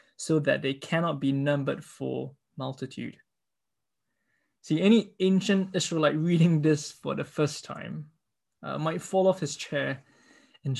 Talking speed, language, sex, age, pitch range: 140 wpm, English, male, 20-39, 135-165 Hz